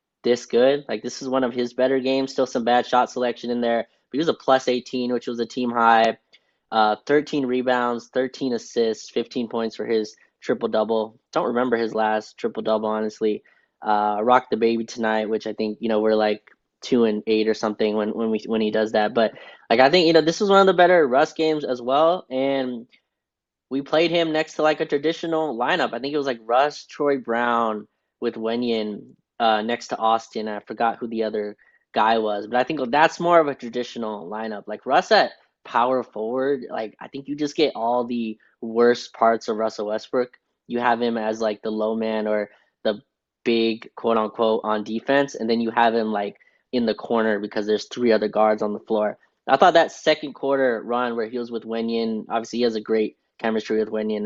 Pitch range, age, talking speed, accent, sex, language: 110-130 Hz, 10-29, 215 wpm, American, male, English